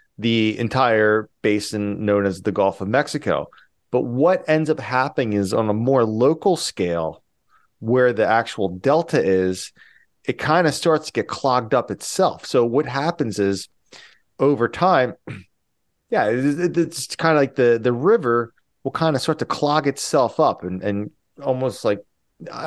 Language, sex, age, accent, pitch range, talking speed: English, male, 30-49, American, 110-150 Hz, 160 wpm